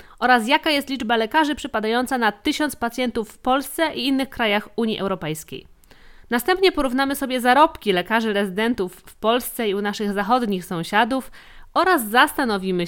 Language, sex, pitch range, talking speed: Polish, female, 200-285 Hz, 145 wpm